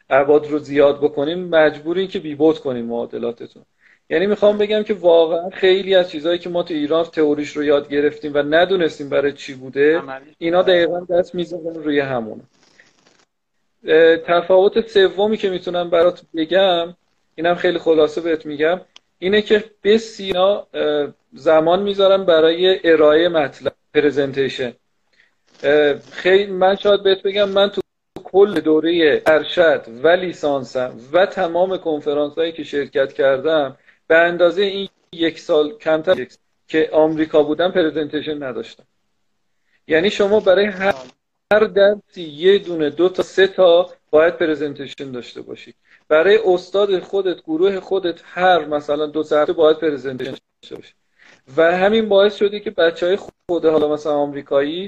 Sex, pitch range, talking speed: male, 150-185 Hz, 140 wpm